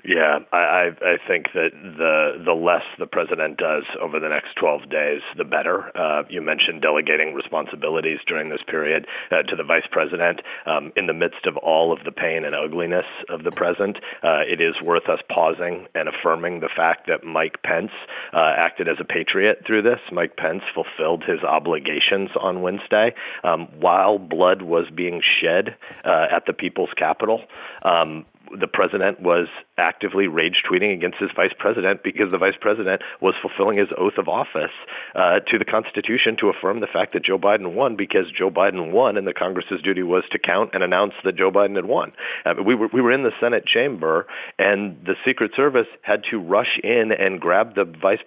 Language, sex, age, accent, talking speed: English, male, 40-59, American, 195 wpm